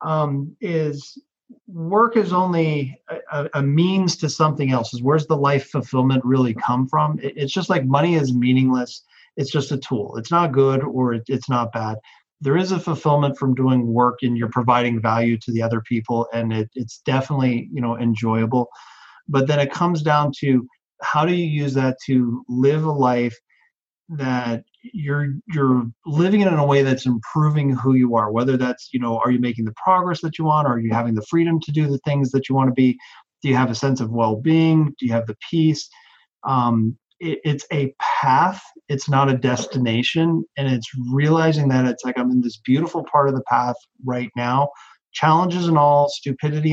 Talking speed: 195 wpm